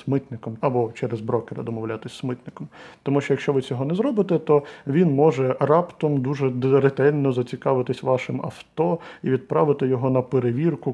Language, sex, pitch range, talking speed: Ukrainian, male, 125-150 Hz, 155 wpm